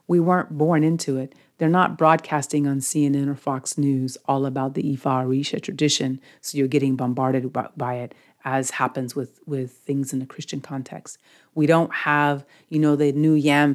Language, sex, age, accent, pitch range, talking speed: English, female, 40-59, American, 135-155 Hz, 185 wpm